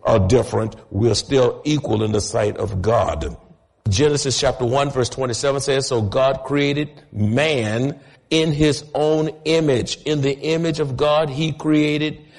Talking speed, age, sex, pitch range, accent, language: 150 wpm, 50-69, male, 130-160 Hz, American, English